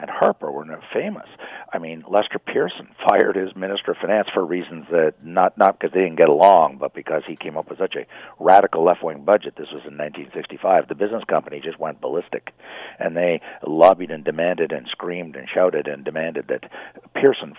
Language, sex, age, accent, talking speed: English, male, 50-69, American, 200 wpm